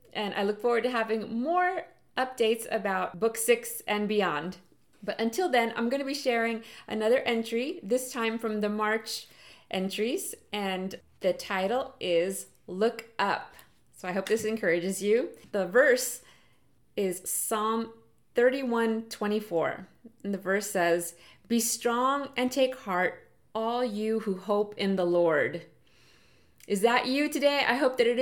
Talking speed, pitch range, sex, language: 150 wpm, 205-250 Hz, female, English